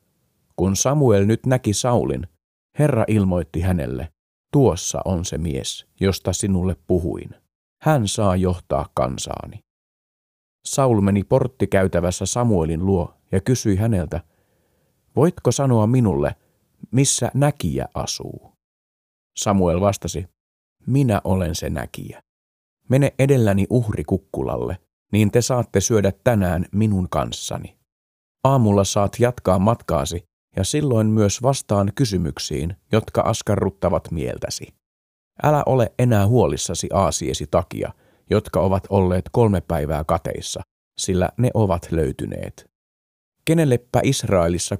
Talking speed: 105 wpm